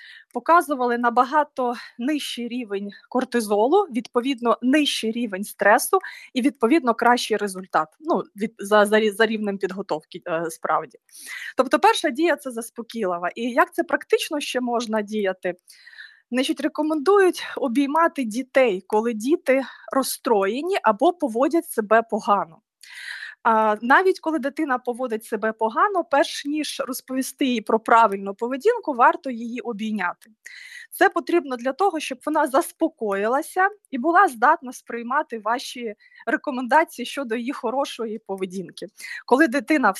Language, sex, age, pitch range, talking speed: Ukrainian, female, 20-39, 225-300 Hz, 120 wpm